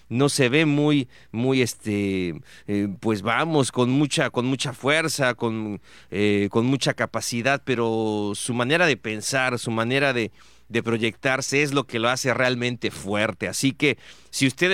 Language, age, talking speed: Spanish, 40-59, 165 wpm